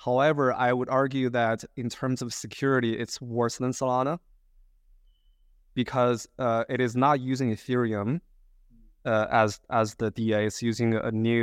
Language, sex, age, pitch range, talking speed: English, male, 20-39, 110-140 Hz, 150 wpm